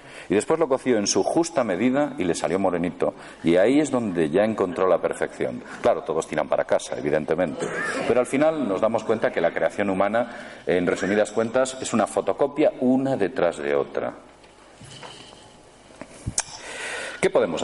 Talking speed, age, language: 165 wpm, 50-69, Spanish